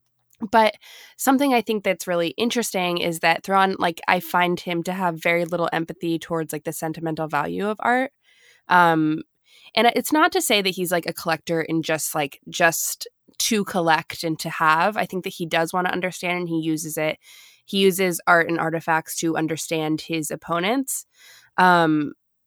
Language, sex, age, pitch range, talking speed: English, female, 20-39, 160-190 Hz, 180 wpm